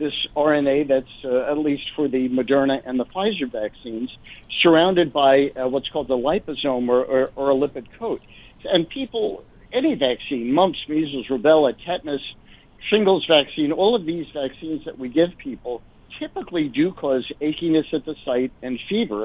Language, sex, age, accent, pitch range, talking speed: English, male, 60-79, American, 130-170 Hz, 160 wpm